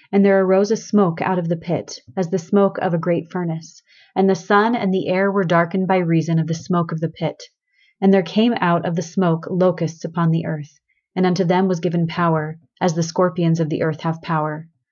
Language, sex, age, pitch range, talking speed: English, female, 30-49, 160-190 Hz, 230 wpm